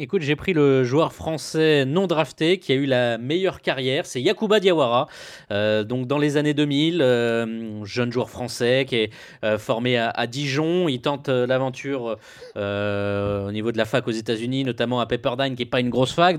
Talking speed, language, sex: 200 wpm, French, male